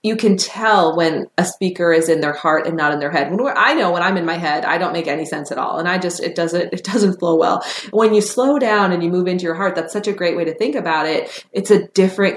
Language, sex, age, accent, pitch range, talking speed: English, female, 30-49, American, 170-215 Hz, 290 wpm